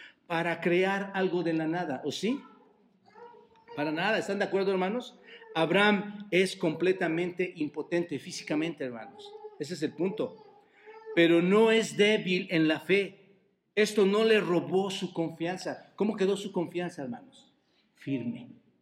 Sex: male